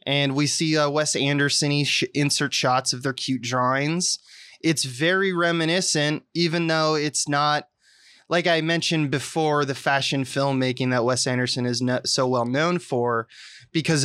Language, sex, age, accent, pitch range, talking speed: English, male, 20-39, American, 130-155 Hz, 150 wpm